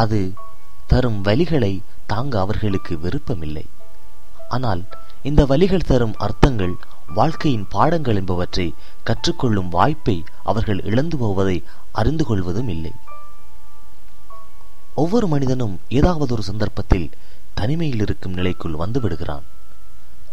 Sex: male